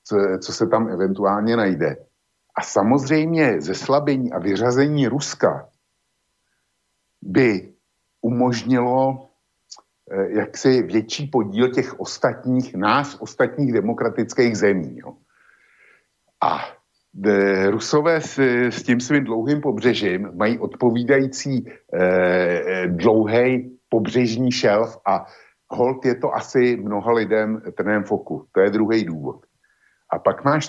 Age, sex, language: 60-79, male, Slovak